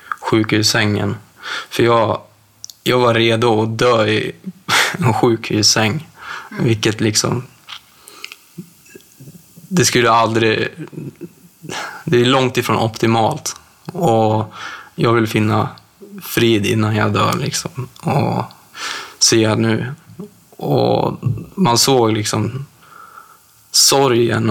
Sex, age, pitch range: male, 20-39, 110-130 Hz